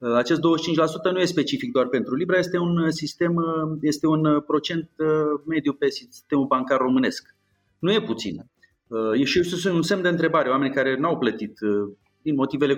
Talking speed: 170 wpm